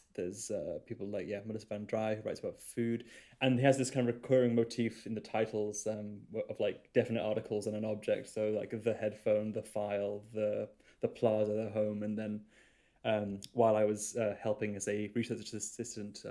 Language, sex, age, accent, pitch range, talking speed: English, male, 20-39, British, 110-125 Hz, 200 wpm